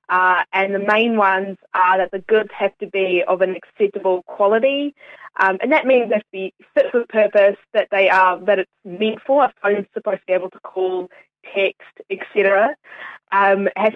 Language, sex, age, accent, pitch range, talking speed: English, female, 20-39, Australian, 185-220 Hz, 200 wpm